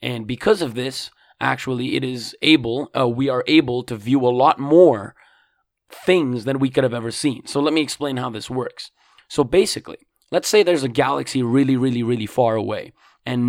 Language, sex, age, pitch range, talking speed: English, male, 20-39, 120-155 Hz, 195 wpm